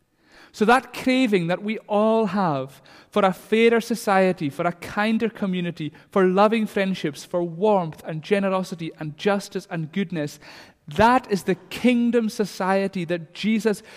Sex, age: male, 40-59